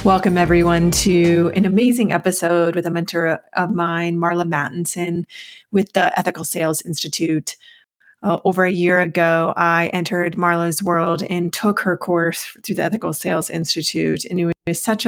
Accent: American